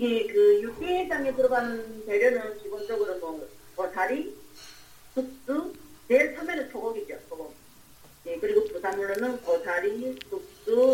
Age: 40-59